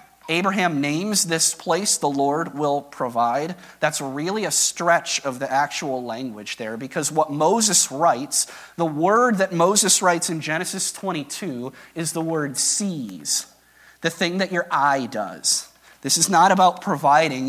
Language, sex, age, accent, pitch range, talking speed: English, male, 30-49, American, 140-180 Hz, 150 wpm